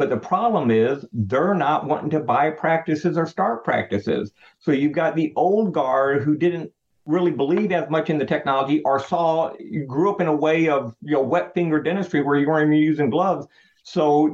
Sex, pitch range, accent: male, 140-165 Hz, American